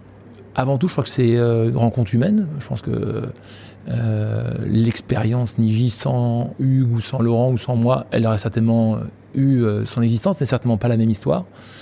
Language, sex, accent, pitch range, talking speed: French, male, French, 110-125 Hz, 190 wpm